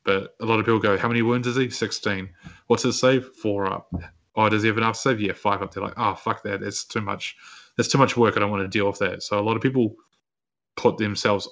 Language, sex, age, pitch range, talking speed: English, male, 20-39, 95-115 Hz, 270 wpm